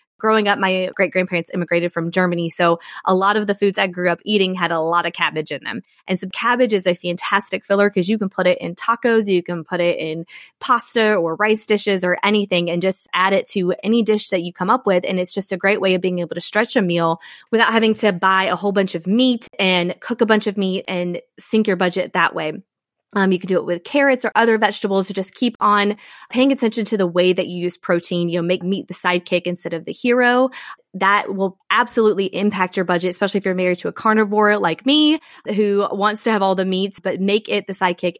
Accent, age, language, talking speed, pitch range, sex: American, 20-39, English, 245 wpm, 180-210 Hz, female